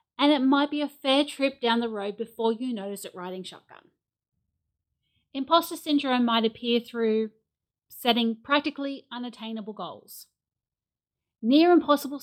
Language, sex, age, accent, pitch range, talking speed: English, female, 40-59, Australian, 210-275 Hz, 130 wpm